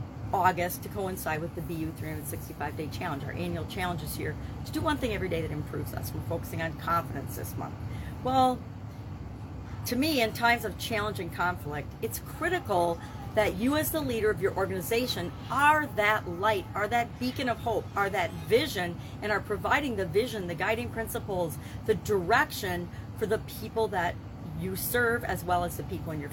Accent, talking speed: American, 185 wpm